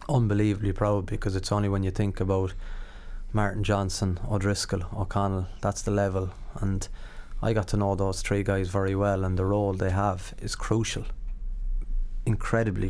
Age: 30-49